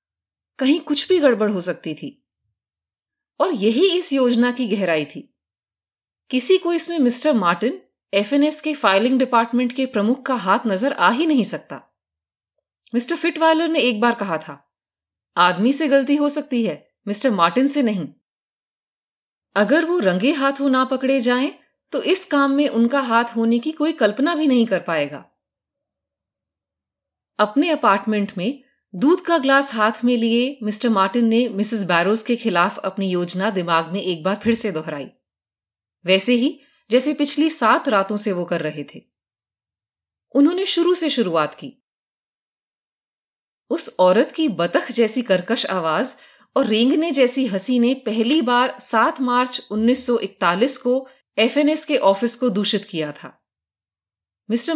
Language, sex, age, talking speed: Hindi, female, 30-49, 150 wpm